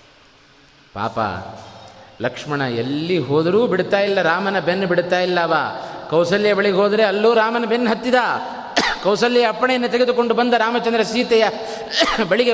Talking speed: 115 wpm